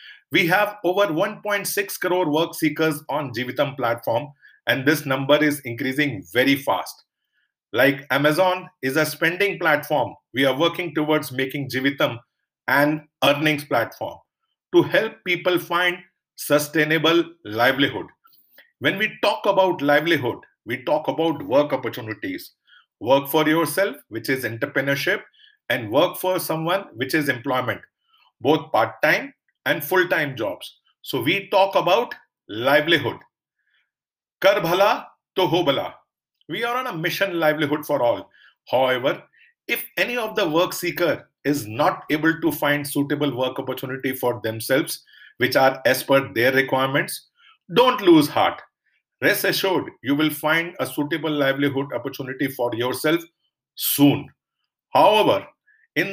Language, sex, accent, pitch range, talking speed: English, male, Indian, 140-180 Hz, 125 wpm